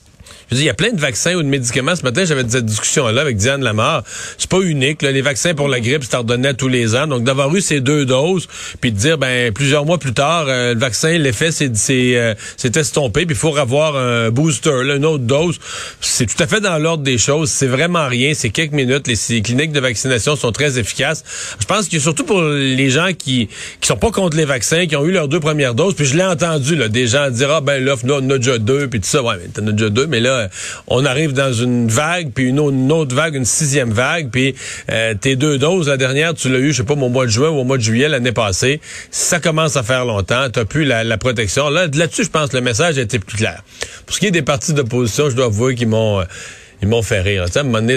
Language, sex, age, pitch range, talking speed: French, male, 40-59, 120-155 Hz, 260 wpm